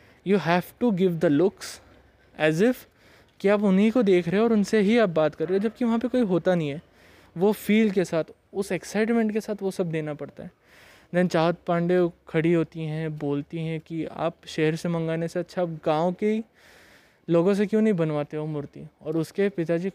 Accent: native